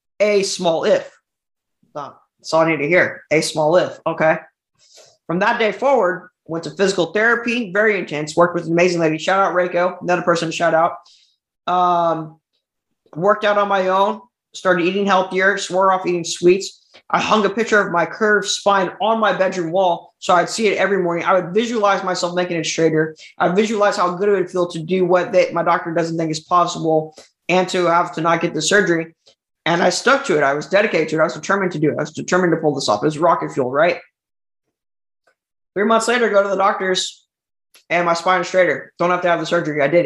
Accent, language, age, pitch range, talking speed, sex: American, English, 20-39, 165-200 Hz, 220 wpm, male